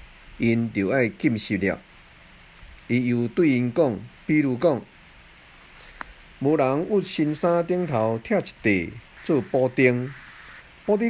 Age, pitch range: 50-69, 100-140 Hz